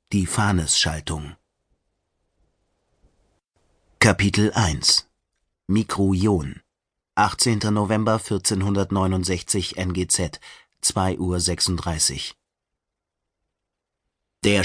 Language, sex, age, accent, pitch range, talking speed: German, male, 30-49, German, 90-110 Hz, 55 wpm